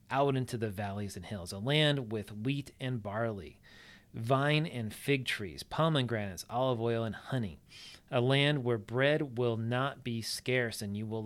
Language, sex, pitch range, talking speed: English, male, 105-130 Hz, 170 wpm